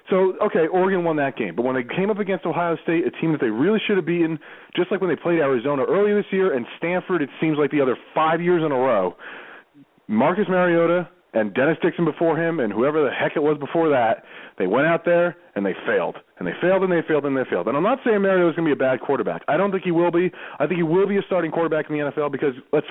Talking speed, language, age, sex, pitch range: 275 wpm, English, 30-49, male, 140-185 Hz